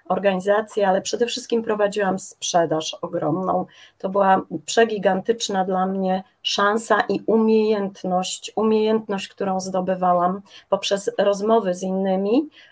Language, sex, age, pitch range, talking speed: Polish, female, 30-49, 180-215 Hz, 105 wpm